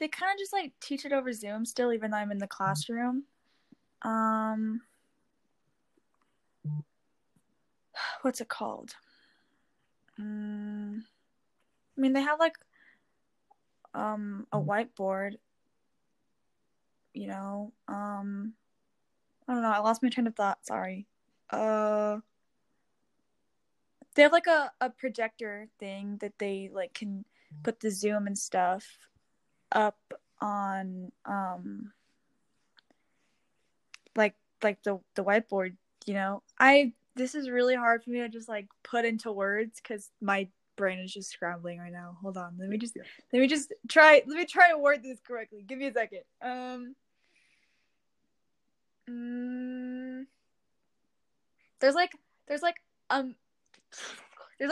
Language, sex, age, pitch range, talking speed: English, female, 10-29, 205-265 Hz, 125 wpm